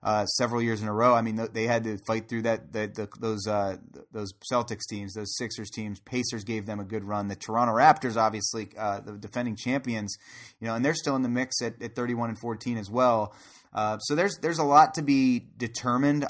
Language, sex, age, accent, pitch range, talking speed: English, male, 30-49, American, 110-120 Hz, 230 wpm